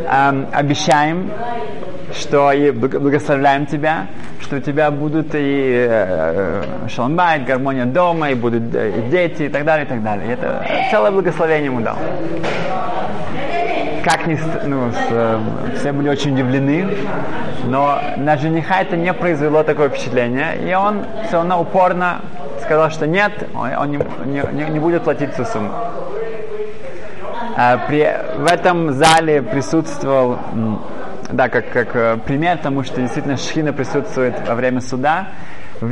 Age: 20-39